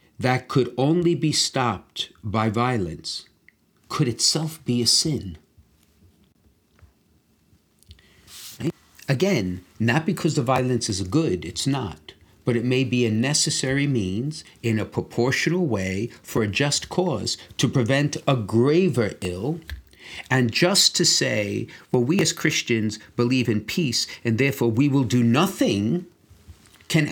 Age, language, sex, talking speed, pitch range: 50-69, English, male, 135 wpm, 105-145 Hz